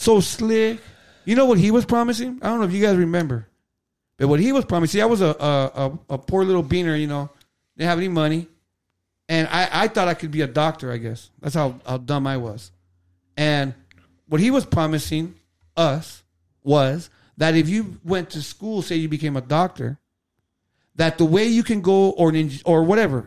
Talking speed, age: 205 wpm, 40-59